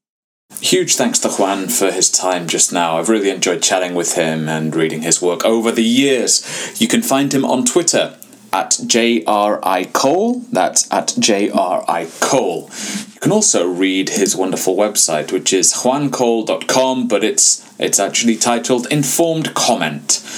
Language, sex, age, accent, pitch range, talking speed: English, male, 20-39, British, 80-140 Hz, 145 wpm